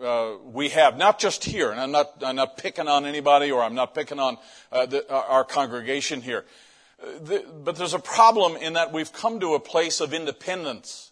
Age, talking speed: 50-69, 190 wpm